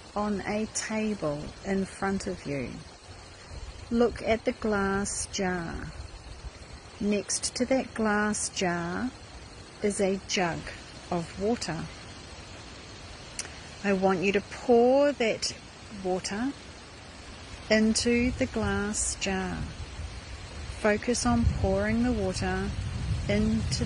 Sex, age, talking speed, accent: female, 40-59, 100 wpm, Australian